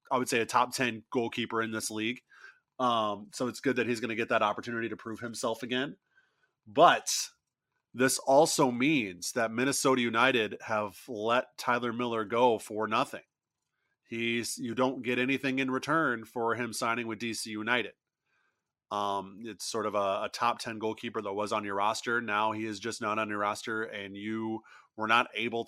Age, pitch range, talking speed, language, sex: 30-49, 110-125 Hz, 185 wpm, English, male